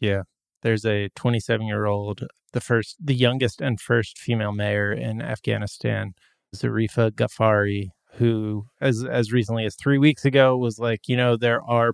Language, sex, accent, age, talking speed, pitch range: English, male, American, 20-39, 160 wpm, 110-125 Hz